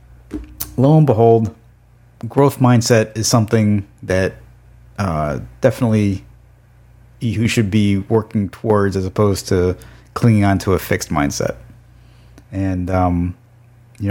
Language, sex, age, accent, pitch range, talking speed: English, male, 30-49, American, 95-120 Hz, 115 wpm